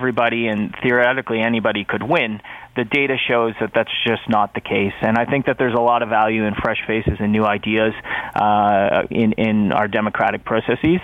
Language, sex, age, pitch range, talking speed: English, male, 30-49, 110-125 Hz, 195 wpm